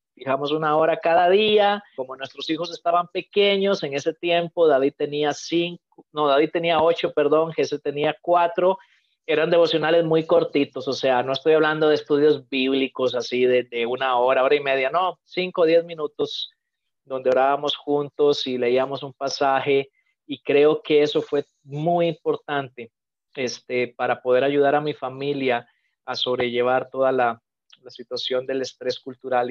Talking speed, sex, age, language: 160 wpm, male, 30-49, English